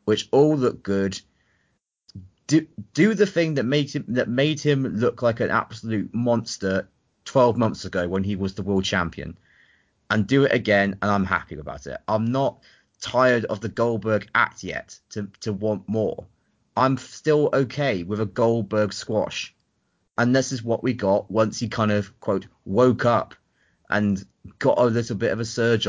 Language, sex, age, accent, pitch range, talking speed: English, male, 30-49, British, 95-125 Hz, 180 wpm